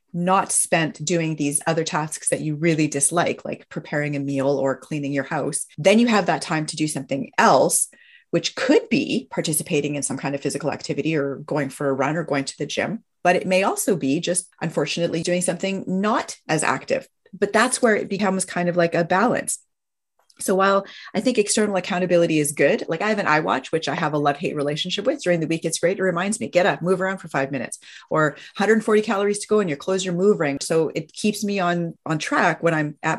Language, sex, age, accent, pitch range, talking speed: English, female, 30-49, American, 150-210 Hz, 225 wpm